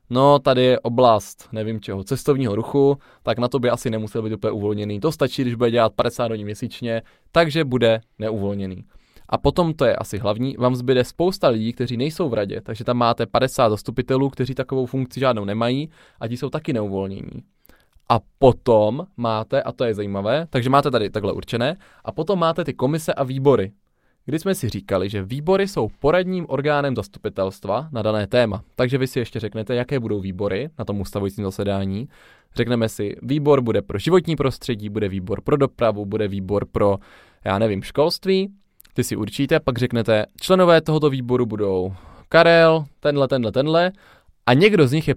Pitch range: 110-145 Hz